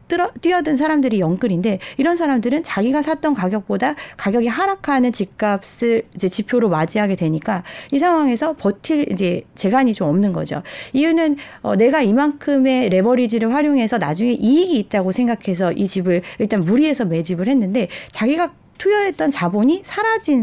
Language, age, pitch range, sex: Korean, 40-59, 190-280 Hz, female